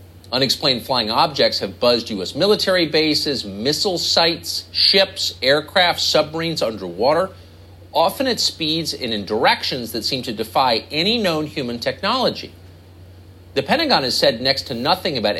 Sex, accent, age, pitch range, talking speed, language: male, American, 50-69, 90-140 Hz, 140 wpm, English